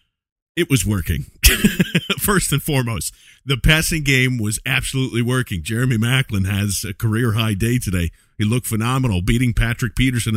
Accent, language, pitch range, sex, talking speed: American, English, 110-140 Hz, male, 150 wpm